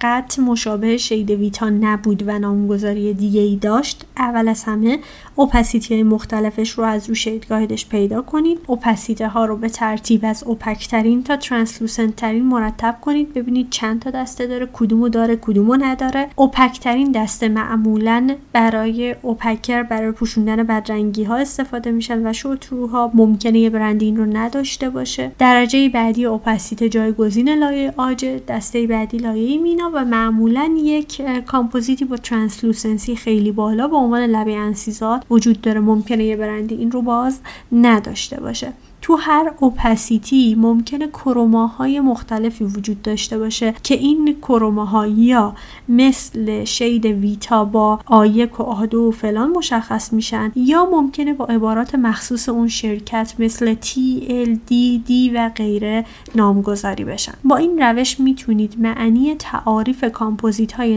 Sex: female